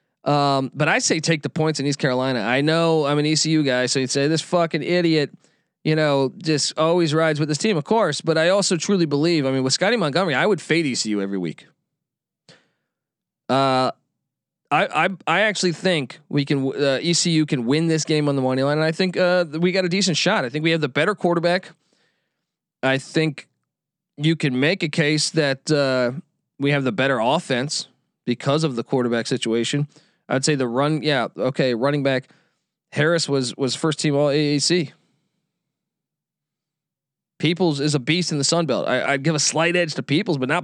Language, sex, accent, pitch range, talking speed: English, male, American, 135-165 Hz, 195 wpm